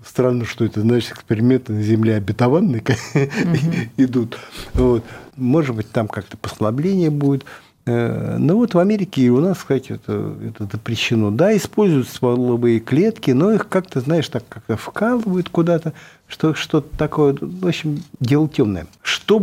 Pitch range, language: 120-175 Hz, Russian